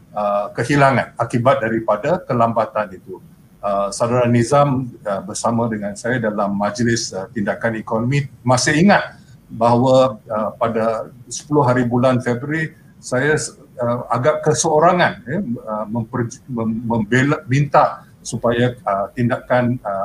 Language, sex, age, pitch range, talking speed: Malay, male, 50-69, 115-135 Hz, 85 wpm